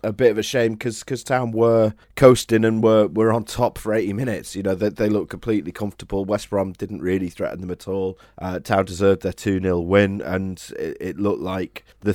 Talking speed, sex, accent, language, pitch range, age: 215 wpm, male, British, English, 90-110 Hz, 30-49